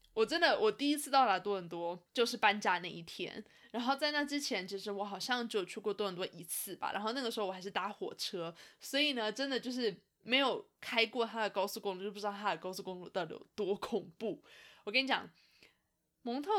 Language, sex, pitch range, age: Chinese, female, 195-265 Hz, 20-39